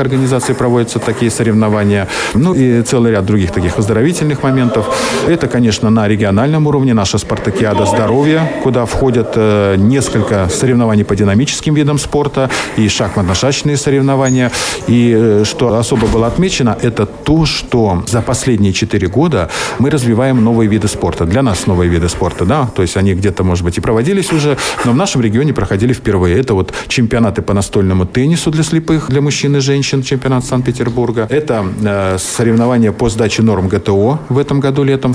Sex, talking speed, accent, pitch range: male, 165 wpm, native, 100-130 Hz